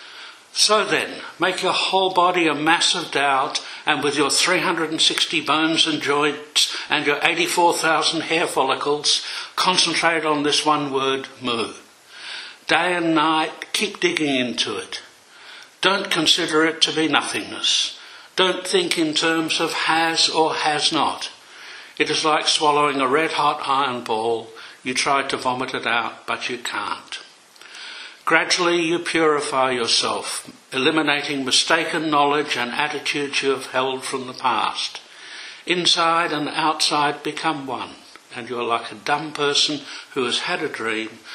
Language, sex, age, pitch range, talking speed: English, male, 60-79, 140-170 Hz, 145 wpm